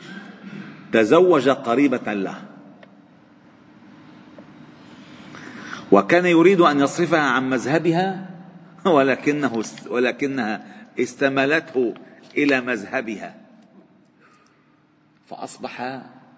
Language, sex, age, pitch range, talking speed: Arabic, male, 40-59, 120-160 Hz, 55 wpm